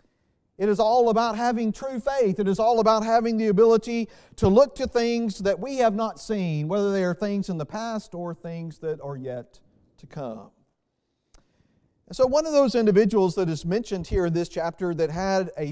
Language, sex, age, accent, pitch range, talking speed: English, male, 40-59, American, 155-220 Hz, 200 wpm